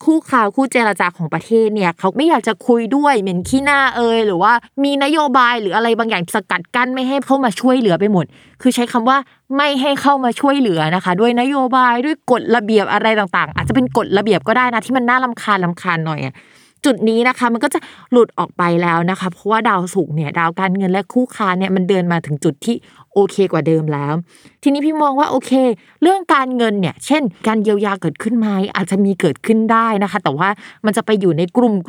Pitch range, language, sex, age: 190-255 Hz, Thai, female, 20-39